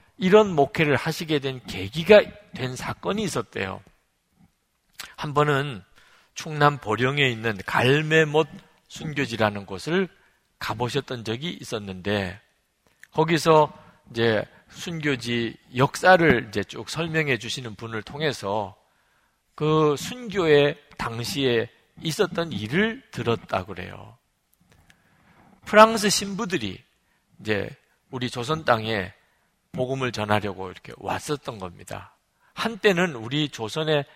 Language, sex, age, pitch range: Korean, male, 50-69, 115-170 Hz